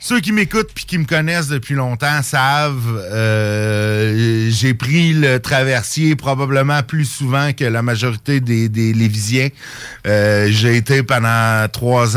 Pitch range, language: 115-140 Hz, French